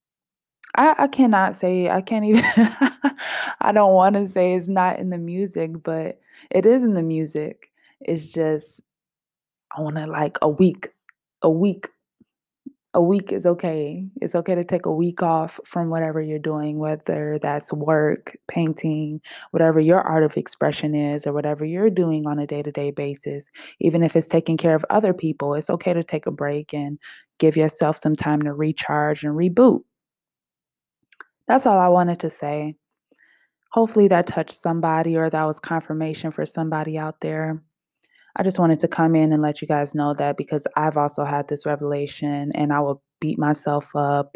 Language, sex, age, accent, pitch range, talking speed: English, female, 20-39, American, 150-180 Hz, 175 wpm